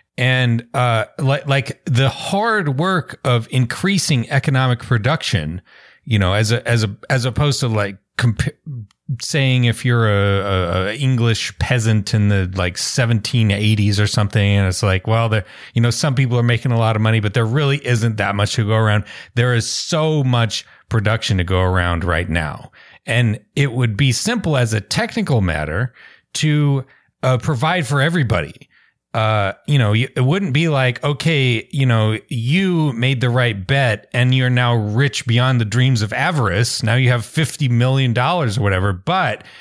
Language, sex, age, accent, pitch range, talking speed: English, male, 30-49, American, 110-140 Hz, 175 wpm